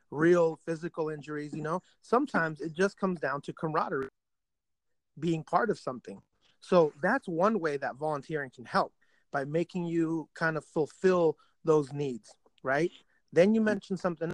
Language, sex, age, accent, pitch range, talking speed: English, male, 30-49, American, 145-175 Hz, 155 wpm